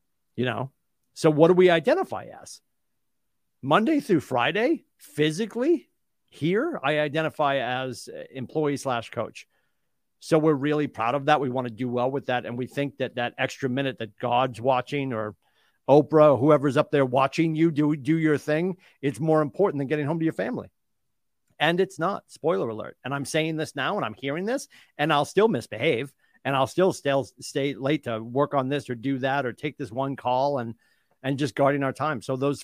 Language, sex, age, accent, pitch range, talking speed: English, male, 50-69, American, 130-160 Hz, 195 wpm